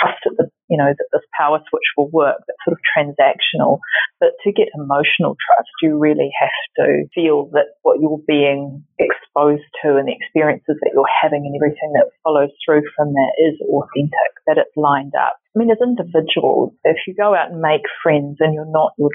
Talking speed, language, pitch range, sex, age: 200 wpm, English, 145-205 Hz, female, 30-49